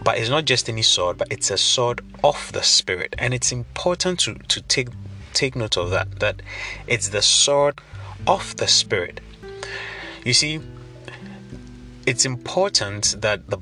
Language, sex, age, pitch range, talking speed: English, male, 30-49, 95-125 Hz, 160 wpm